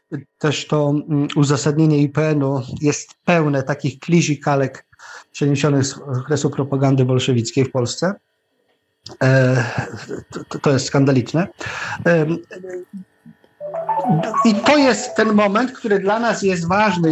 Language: Polish